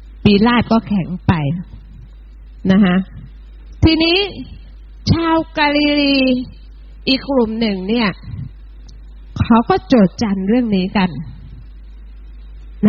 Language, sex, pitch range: Thai, female, 210-315 Hz